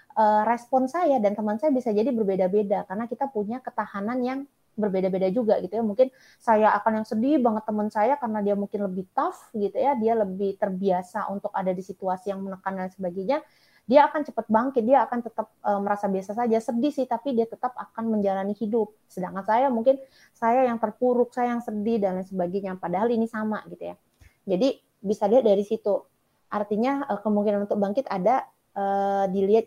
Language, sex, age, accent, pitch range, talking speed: Indonesian, female, 20-39, native, 195-235 Hz, 180 wpm